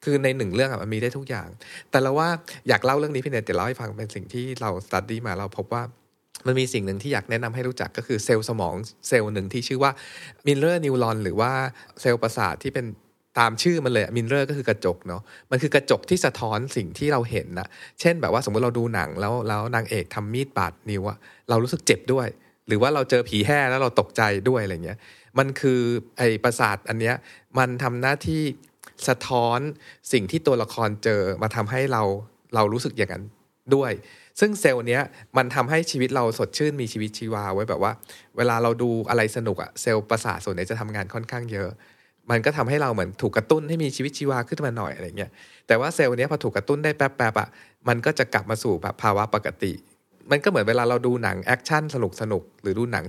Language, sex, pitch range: Thai, male, 110-135 Hz